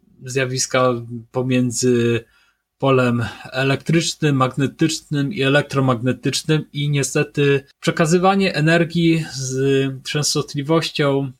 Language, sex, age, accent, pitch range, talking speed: Polish, male, 20-39, native, 130-155 Hz, 70 wpm